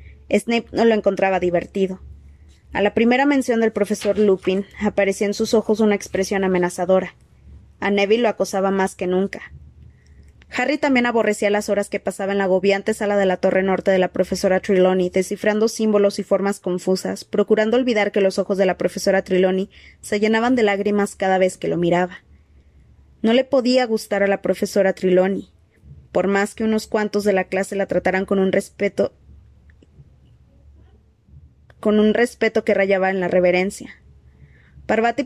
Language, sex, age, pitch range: Spanish, female, 20-39, 185-210 Hz